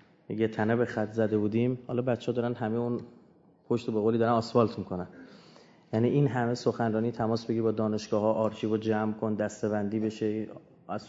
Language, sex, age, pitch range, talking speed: Persian, male, 30-49, 110-125 Hz, 175 wpm